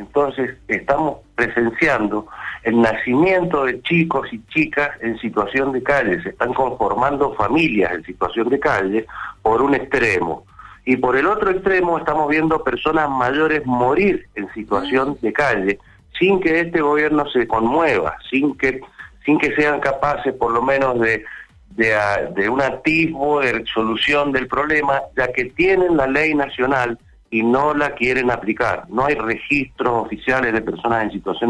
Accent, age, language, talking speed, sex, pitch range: Argentinian, 50-69, Spanish, 155 wpm, male, 115-150 Hz